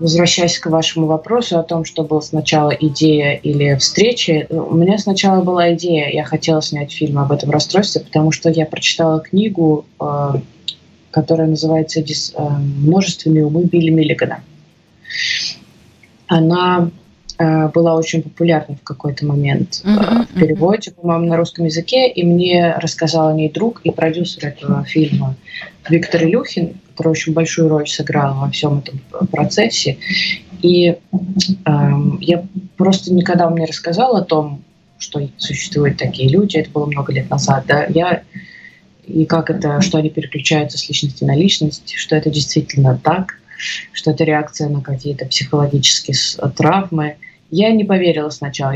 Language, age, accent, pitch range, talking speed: Russian, 20-39, native, 150-175 Hz, 140 wpm